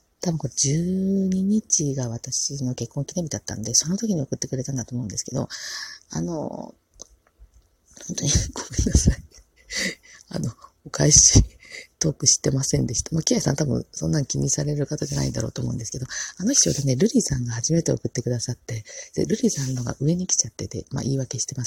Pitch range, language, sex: 115-150 Hz, Japanese, female